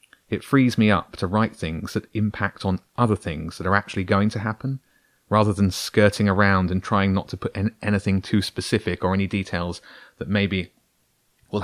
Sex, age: male, 30-49